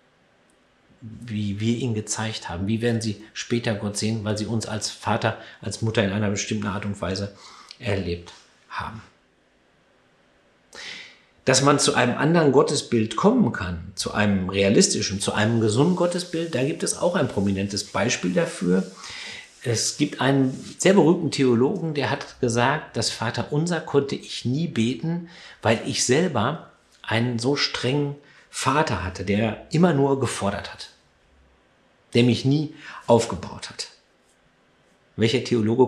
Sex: male